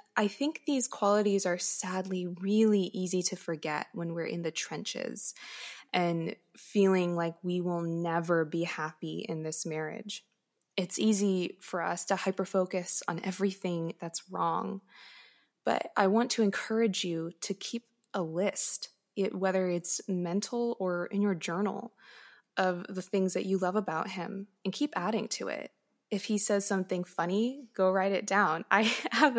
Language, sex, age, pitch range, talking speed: English, female, 20-39, 180-215 Hz, 155 wpm